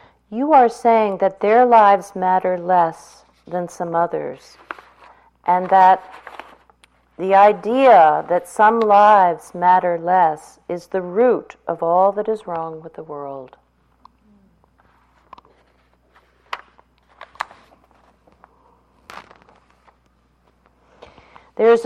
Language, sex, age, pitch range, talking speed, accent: English, female, 50-69, 160-205 Hz, 90 wpm, American